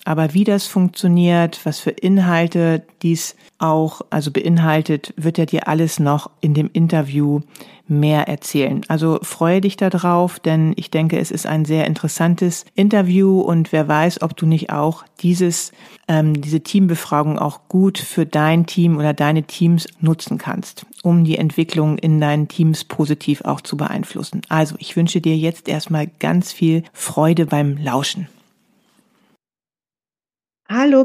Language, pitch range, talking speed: German, 160-195 Hz, 150 wpm